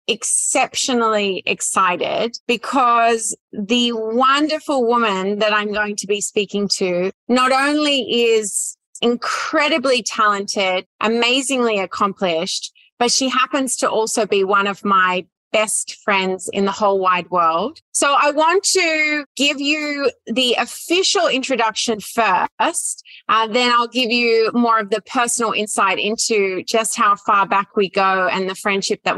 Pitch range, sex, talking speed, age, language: 200-255 Hz, female, 140 wpm, 30-49, English